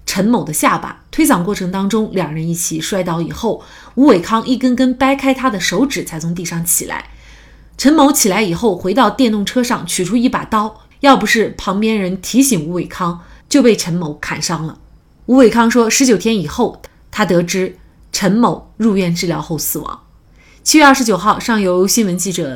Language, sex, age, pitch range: Chinese, female, 30-49, 170-230 Hz